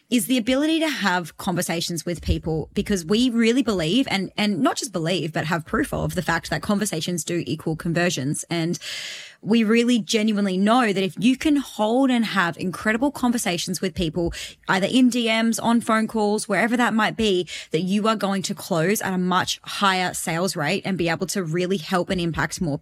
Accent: Australian